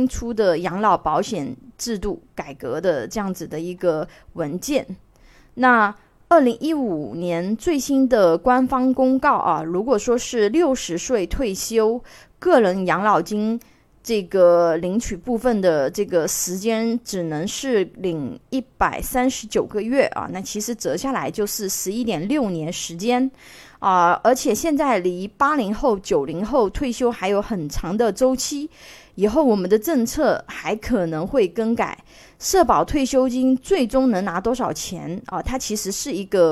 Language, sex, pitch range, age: Chinese, female, 195-260 Hz, 20-39